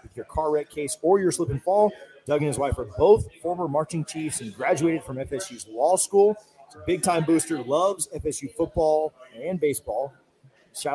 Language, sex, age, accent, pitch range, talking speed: English, male, 40-59, American, 135-180 Hz, 185 wpm